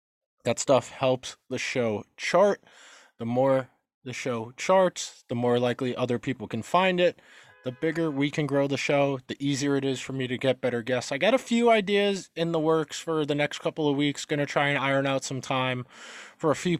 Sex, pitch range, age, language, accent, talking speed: male, 130-165 Hz, 20-39, English, American, 215 wpm